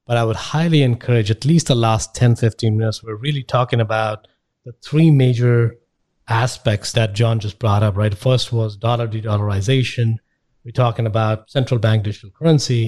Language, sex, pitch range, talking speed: English, male, 115-145 Hz, 170 wpm